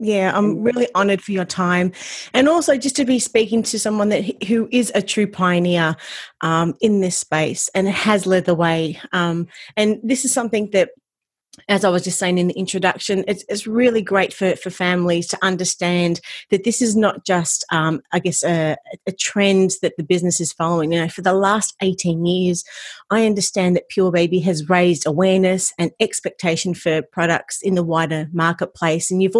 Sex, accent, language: female, Australian, English